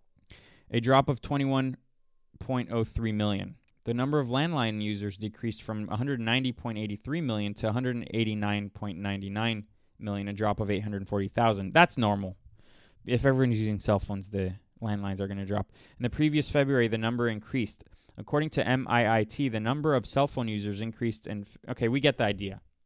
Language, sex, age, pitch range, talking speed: English, male, 20-39, 100-130 Hz, 150 wpm